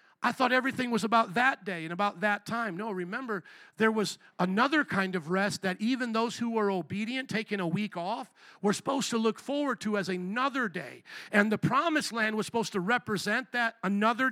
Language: English